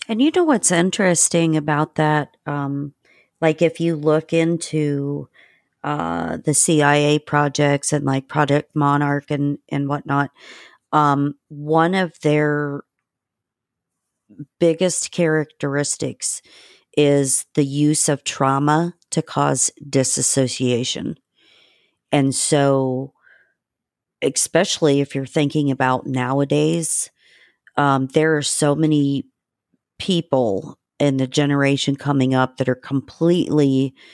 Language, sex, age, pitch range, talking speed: English, female, 40-59, 135-155 Hz, 105 wpm